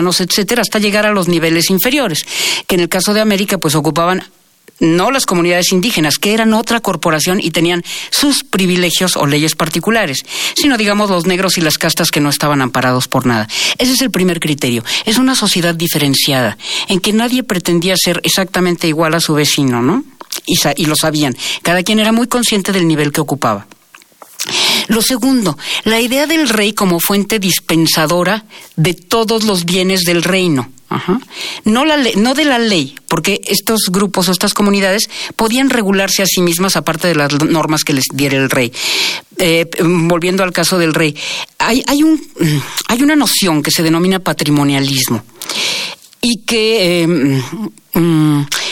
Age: 50-69